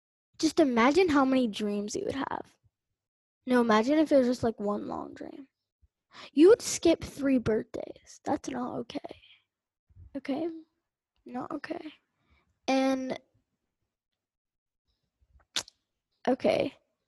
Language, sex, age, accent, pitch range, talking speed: English, female, 10-29, American, 250-310 Hz, 110 wpm